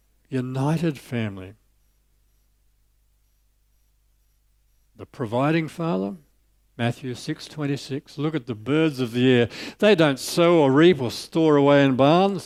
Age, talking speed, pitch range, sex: 60-79, 125 wpm, 110-160 Hz, male